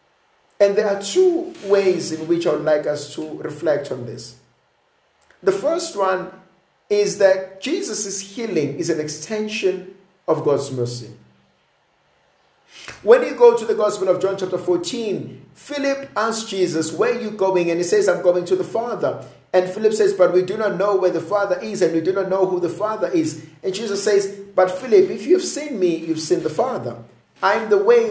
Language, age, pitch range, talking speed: English, 50-69, 150-205 Hz, 190 wpm